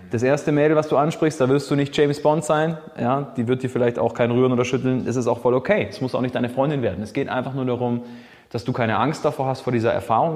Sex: male